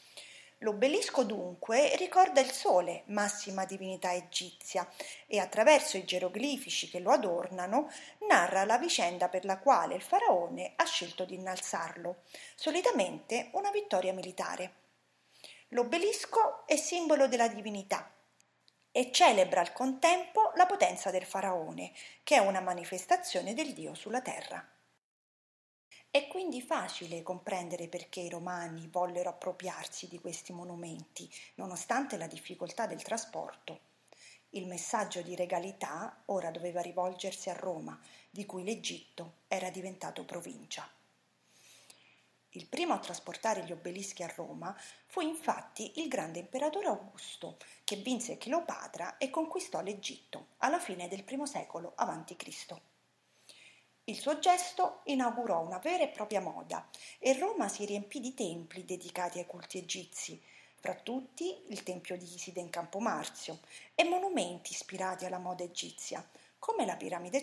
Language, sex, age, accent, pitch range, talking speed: Italian, female, 30-49, native, 180-280 Hz, 130 wpm